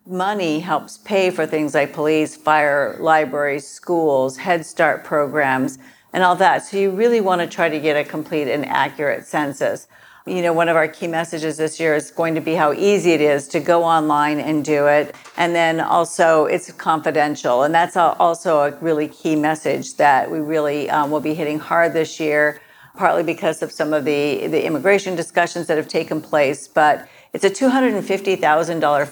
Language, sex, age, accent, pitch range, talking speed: English, female, 60-79, American, 150-170 Hz, 190 wpm